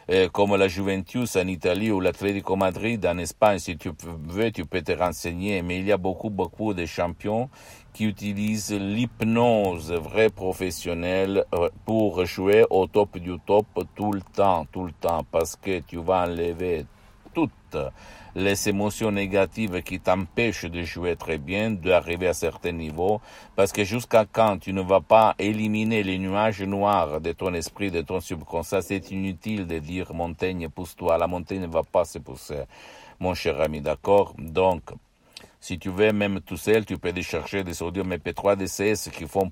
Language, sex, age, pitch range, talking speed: Italian, male, 60-79, 85-105 Hz, 170 wpm